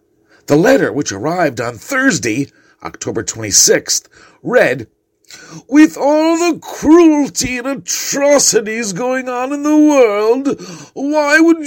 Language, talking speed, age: English, 115 wpm, 50-69